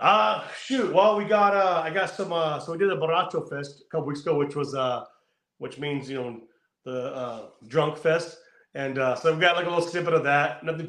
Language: English